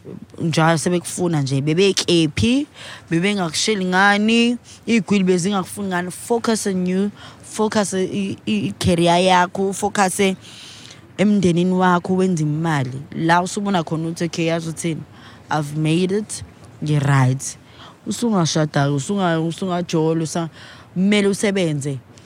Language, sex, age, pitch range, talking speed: English, female, 20-39, 150-190 Hz, 95 wpm